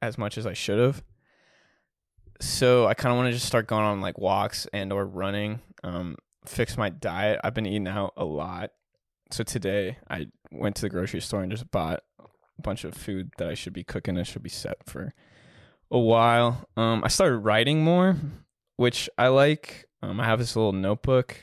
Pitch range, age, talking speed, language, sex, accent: 100-125 Hz, 20-39, 200 wpm, English, male, American